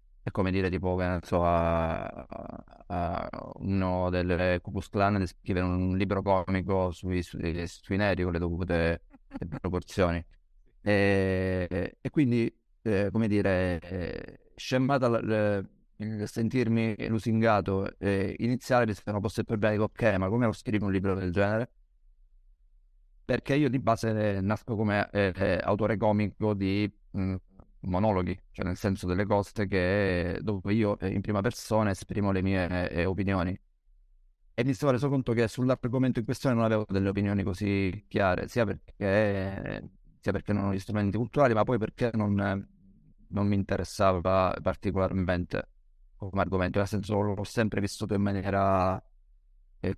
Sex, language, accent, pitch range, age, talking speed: male, Italian, native, 90-105 Hz, 30-49, 150 wpm